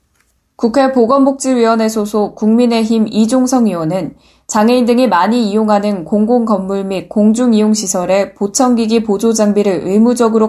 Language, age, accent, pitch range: Korean, 10-29, native, 185-230 Hz